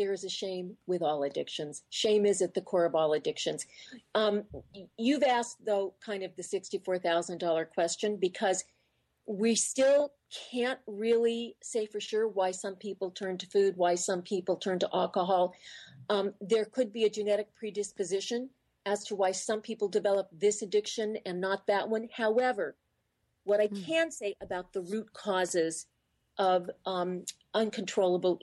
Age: 40-59